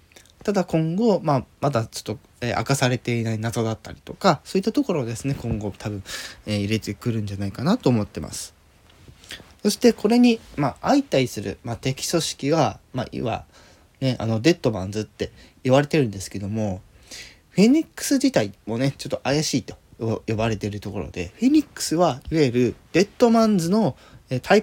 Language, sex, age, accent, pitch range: Japanese, male, 20-39, native, 100-160 Hz